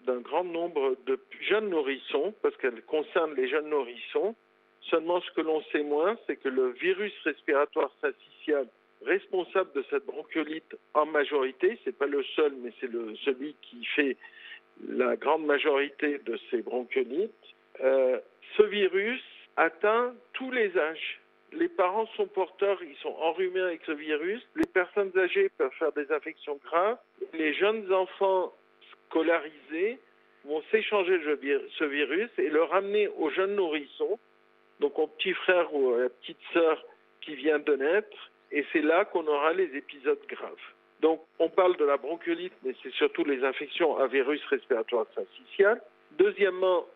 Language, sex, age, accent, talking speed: French, male, 50-69, French, 155 wpm